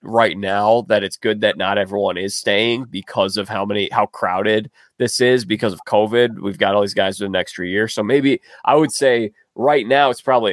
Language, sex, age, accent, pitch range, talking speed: English, male, 20-39, American, 105-130 Hz, 230 wpm